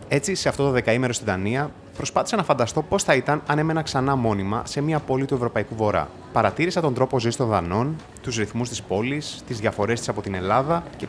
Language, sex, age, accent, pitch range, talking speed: Greek, male, 30-49, native, 110-150 Hz, 215 wpm